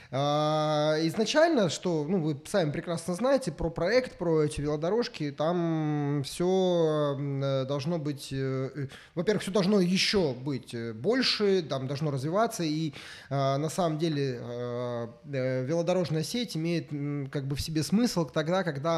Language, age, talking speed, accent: Russian, 20-39, 125 wpm, native